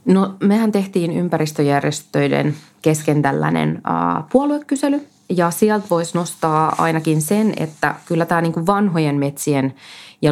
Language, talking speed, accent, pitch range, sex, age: Finnish, 110 wpm, native, 145-185 Hz, female, 30-49